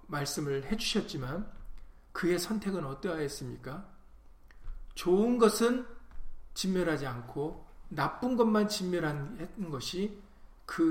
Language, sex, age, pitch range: Korean, male, 40-59, 145-215 Hz